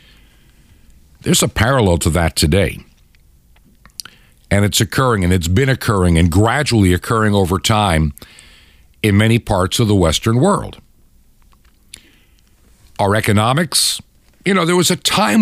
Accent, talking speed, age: American, 120 wpm, 60-79